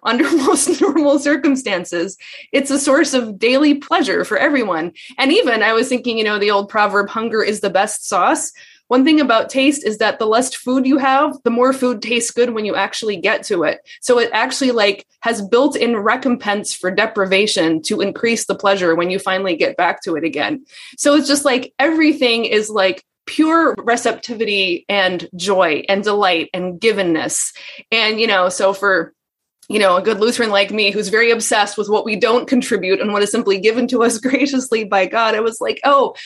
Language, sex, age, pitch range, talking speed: English, female, 20-39, 195-265 Hz, 200 wpm